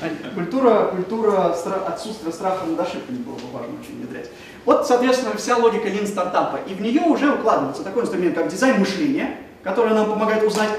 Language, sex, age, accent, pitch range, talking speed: Russian, male, 20-39, native, 185-245 Hz, 180 wpm